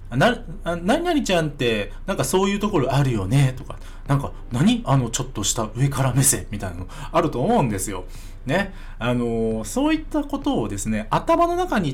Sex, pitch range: male, 100-165 Hz